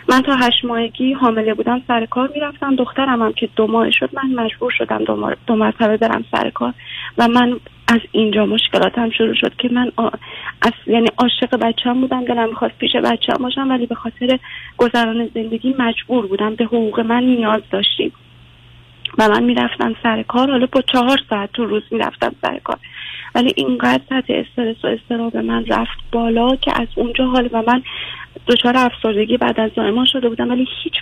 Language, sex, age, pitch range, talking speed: Persian, female, 30-49, 220-255 Hz, 180 wpm